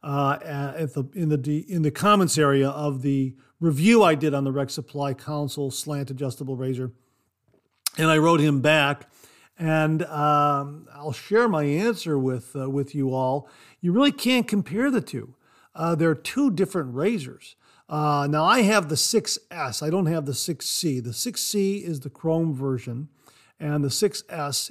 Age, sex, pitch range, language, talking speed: 50-69, male, 140-180 Hz, English, 170 wpm